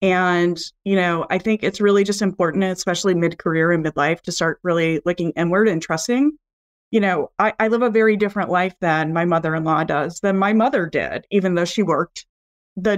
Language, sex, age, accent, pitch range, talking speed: English, female, 30-49, American, 175-220 Hz, 210 wpm